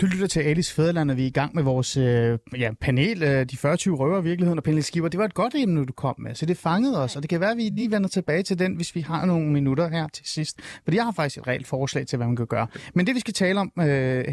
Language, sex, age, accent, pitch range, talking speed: Danish, male, 30-49, native, 140-190 Hz, 295 wpm